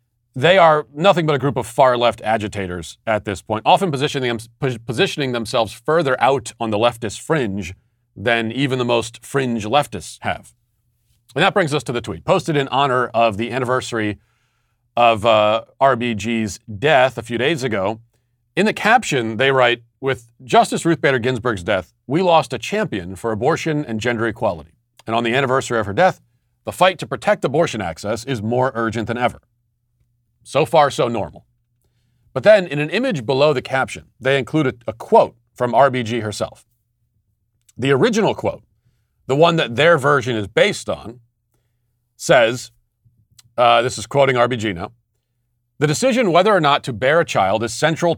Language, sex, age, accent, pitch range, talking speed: English, male, 40-59, American, 115-135 Hz, 170 wpm